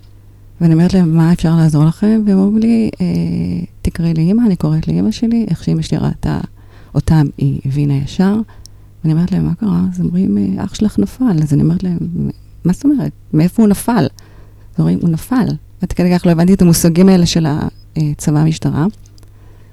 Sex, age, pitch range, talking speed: female, 30-49, 105-175 Hz, 190 wpm